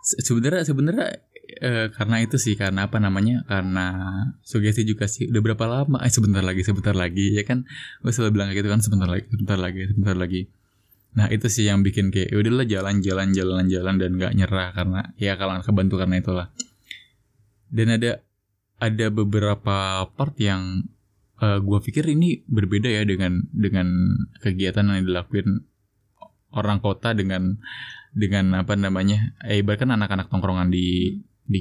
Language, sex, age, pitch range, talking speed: Indonesian, male, 20-39, 95-110 Hz, 160 wpm